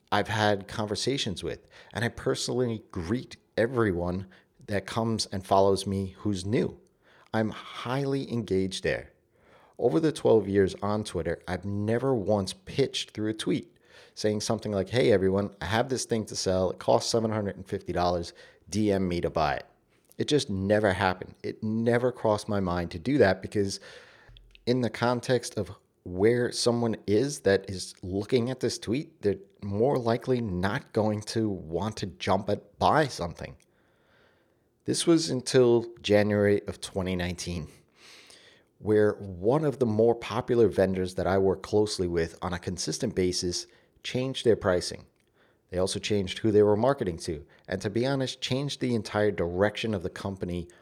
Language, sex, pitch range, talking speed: English, male, 95-120 Hz, 160 wpm